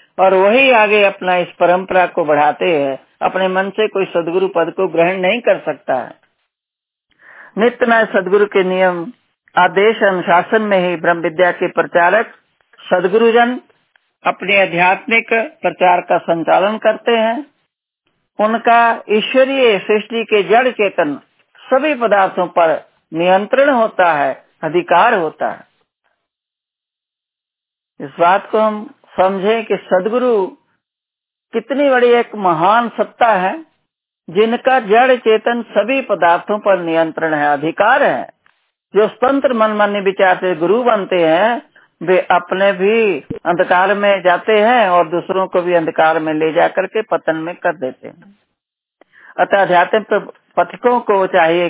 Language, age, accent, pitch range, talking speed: Hindi, 60-79, native, 175-225 Hz, 130 wpm